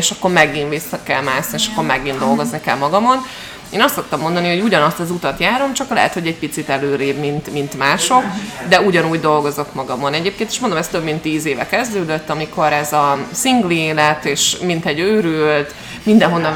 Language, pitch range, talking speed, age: Hungarian, 155-200 Hz, 190 wpm, 20-39